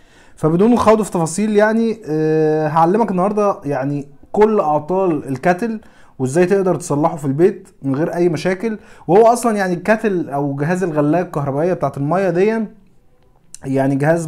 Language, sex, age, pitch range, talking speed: Arabic, male, 20-39, 145-195 Hz, 145 wpm